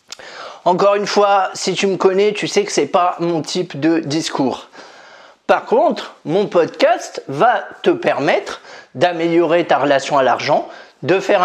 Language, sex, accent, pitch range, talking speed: French, male, French, 170-210 Hz, 160 wpm